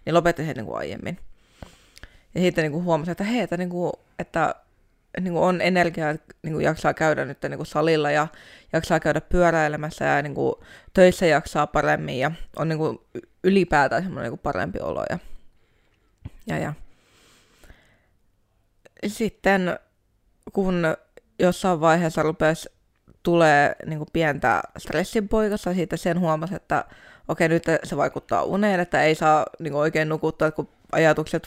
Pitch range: 150-180 Hz